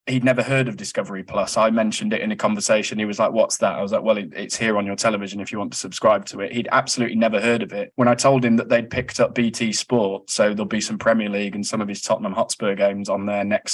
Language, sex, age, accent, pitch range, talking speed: English, male, 20-39, British, 110-130 Hz, 285 wpm